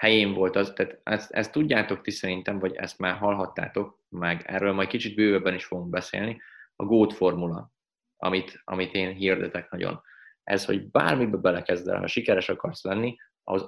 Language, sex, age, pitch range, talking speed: Hungarian, male, 30-49, 95-110 Hz, 160 wpm